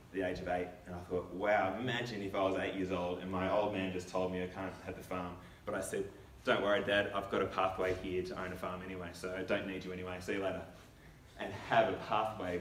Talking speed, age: 265 wpm, 20-39